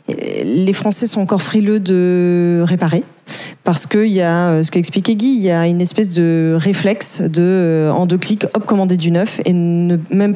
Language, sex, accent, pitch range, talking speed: French, female, French, 175-215 Hz, 195 wpm